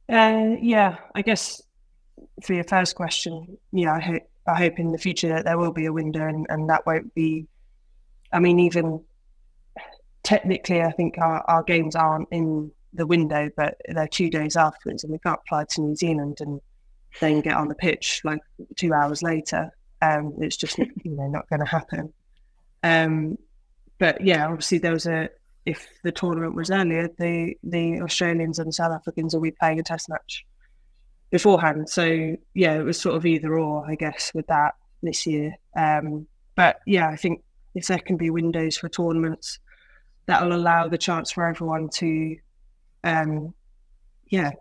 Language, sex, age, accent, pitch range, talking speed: English, female, 20-39, British, 155-175 Hz, 175 wpm